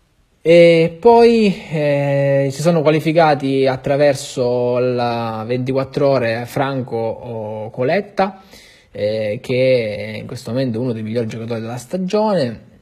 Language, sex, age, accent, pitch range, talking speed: Italian, male, 20-39, native, 115-145 Hz, 115 wpm